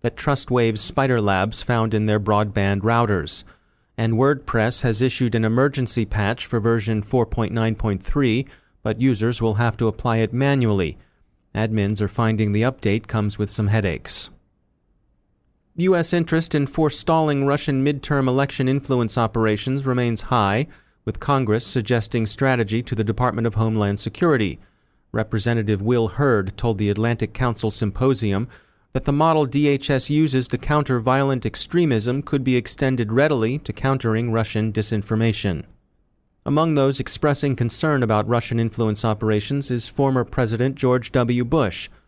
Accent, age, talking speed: American, 30-49, 135 wpm